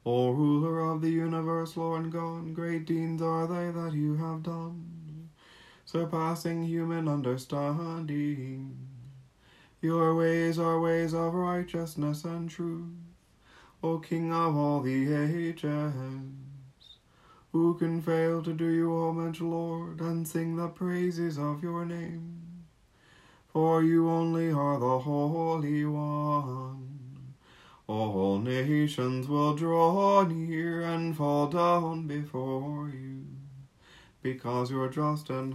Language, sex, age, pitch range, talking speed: English, male, 30-49, 130-165 Hz, 115 wpm